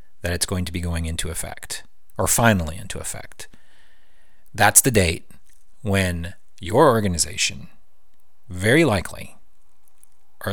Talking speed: 120 wpm